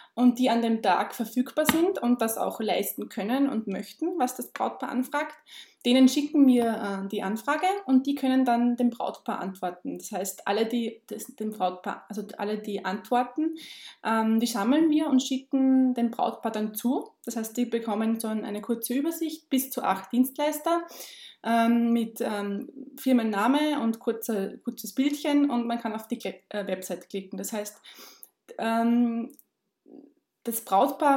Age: 20-39